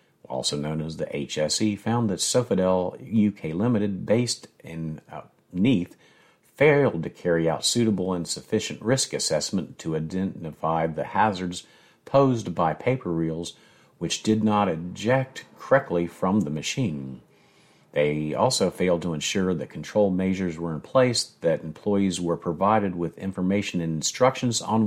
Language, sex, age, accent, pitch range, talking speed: English, male, 50-69, American, 85-110 Hz, 140 wpm